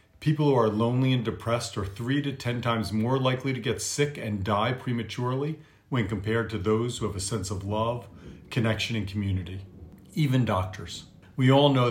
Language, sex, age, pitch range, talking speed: English, male, 50-69, 100-120 Hz, 185 wpm